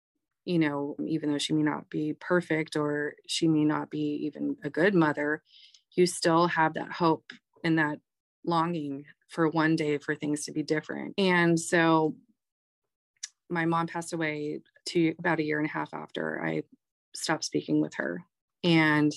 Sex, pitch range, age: female, 150-165 Hz, 30-49